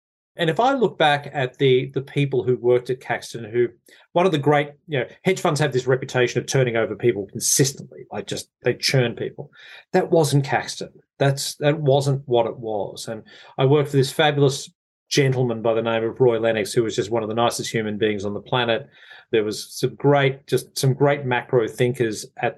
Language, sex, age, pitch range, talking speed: English, male, 30-49, 120-140 Hz, 210 wpm